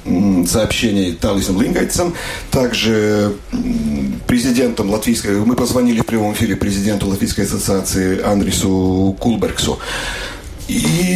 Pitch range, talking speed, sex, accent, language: 100-125 Hz, 90 wpm, male, native, Russian